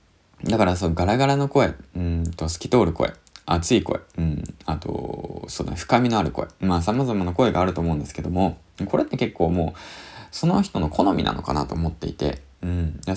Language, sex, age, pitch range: Japanese, male, 20-39, 85-140 Hz